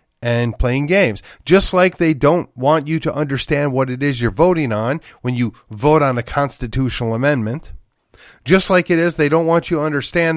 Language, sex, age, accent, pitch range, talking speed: English, male, 40-59, American, 120-165 Hz, 195 wpm